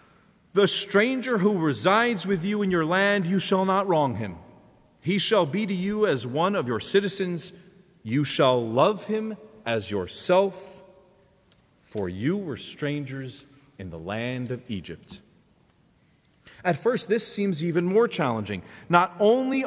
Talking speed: 145 wpm